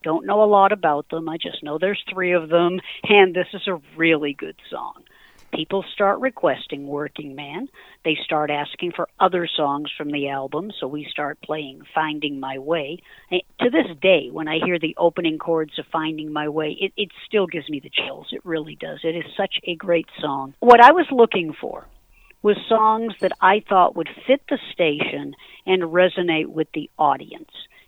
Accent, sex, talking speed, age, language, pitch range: American, female, 190 wpm, 50-69, English, 160-215 Hz